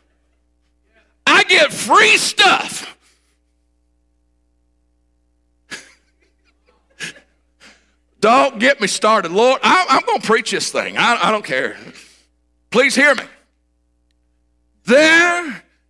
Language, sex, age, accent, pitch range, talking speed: English, male, 50-69, American, 195-305 Hz, 85 wpm